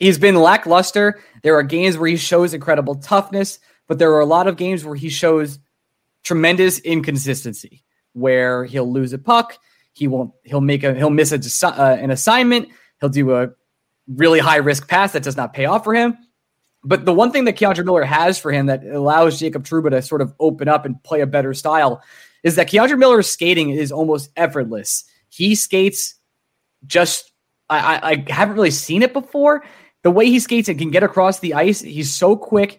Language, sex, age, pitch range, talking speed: English, male, 20-39, 145-210 Hz, 200 wpm